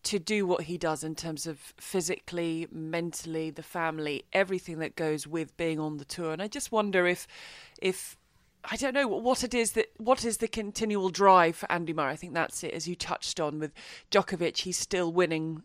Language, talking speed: English, 205 wpm